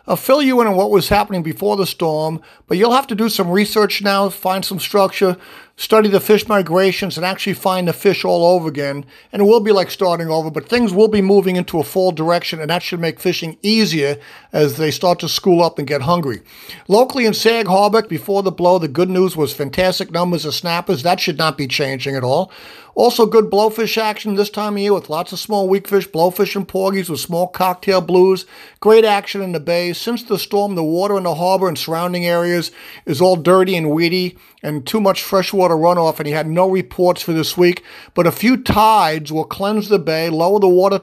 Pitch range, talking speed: 165-205 Hz, 225 wpm